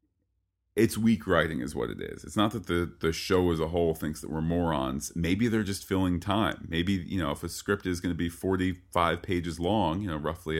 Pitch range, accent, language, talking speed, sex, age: 80-95 Hz, American, English, 230 wpm, male, 40-59